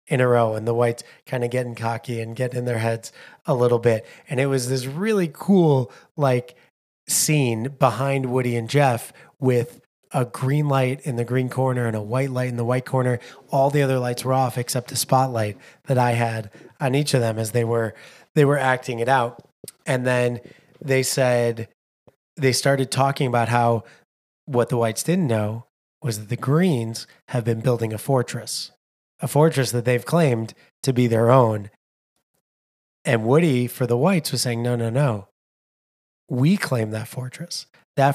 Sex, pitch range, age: male, 120-140 Hz, 30-49